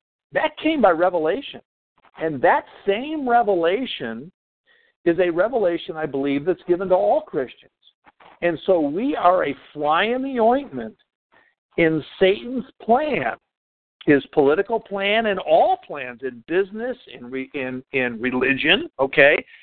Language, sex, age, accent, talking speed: English, male, 50-69, American, 130 wpm